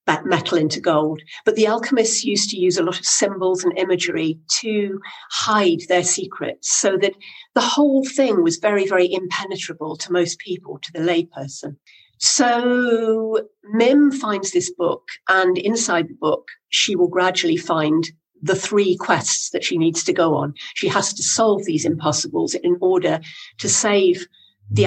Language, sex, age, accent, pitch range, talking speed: English, female, 50-69, British, 175-235 Hz, 160 wpm